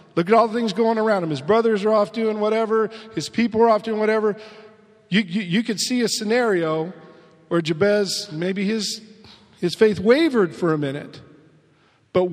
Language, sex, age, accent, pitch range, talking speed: English, male, 40-59, American, 150-210 Hz, 185 wpm